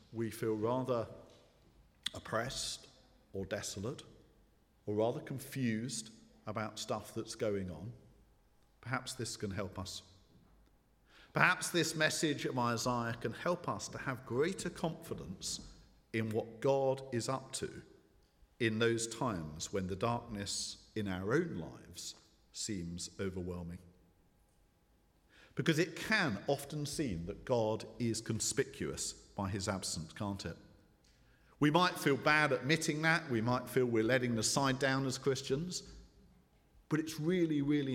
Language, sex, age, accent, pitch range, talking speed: English, male, 50-69, British, 105-135 Hz, 135 wpm